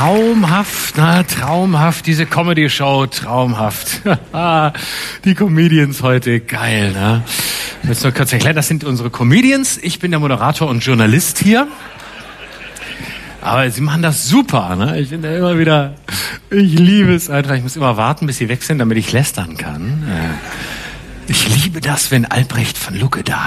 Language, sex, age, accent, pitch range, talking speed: English, male, 50-69, German, 150-220 Hz, 160 wpm